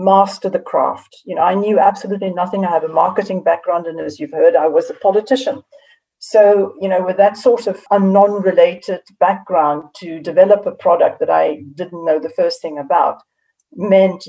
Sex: female